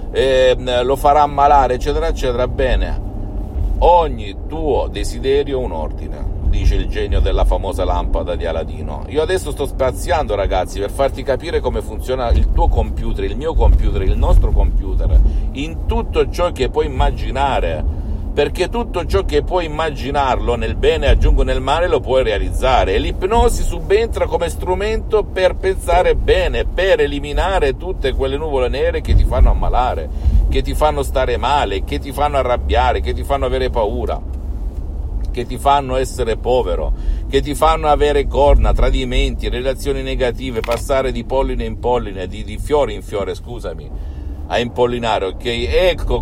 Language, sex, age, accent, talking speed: Italian, male, 50-69, native, 155 wpm